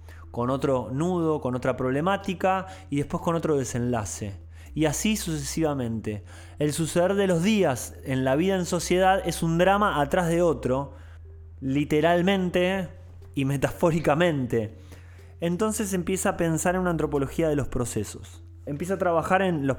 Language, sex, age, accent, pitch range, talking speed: Spanish, male, 20-39, Argentinian, 110-170 Hz, 145 wpm